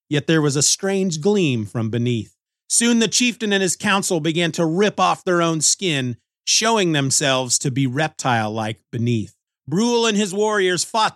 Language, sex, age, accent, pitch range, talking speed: English, male, 30-49, American, 130-195 Hz, 175 wpm